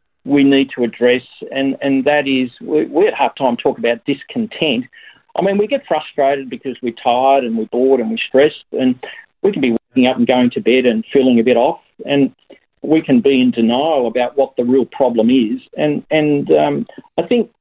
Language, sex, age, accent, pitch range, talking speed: English, male, 50-69, Australian, 125-150 Hz, 210 wpm